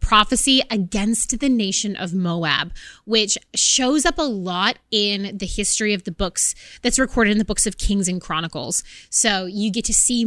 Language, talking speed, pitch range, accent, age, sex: English, 180 wpm, 195-240 Hz, American, 20-39, female